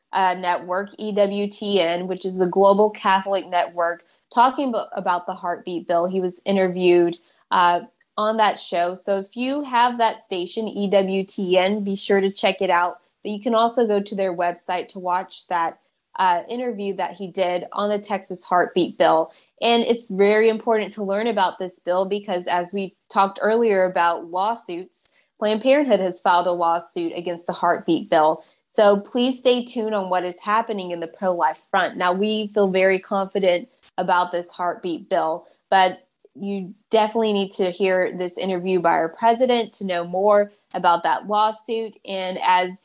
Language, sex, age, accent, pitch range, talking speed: English, female, 20-39, American, 180-215 Hz, 170 wpm